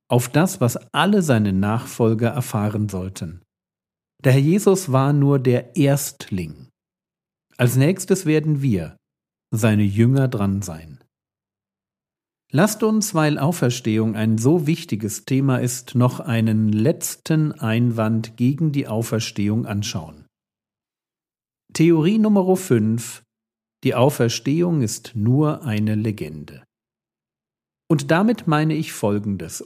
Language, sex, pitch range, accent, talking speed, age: German, male, 110-155 Hz, German, 110 wpm, 50-69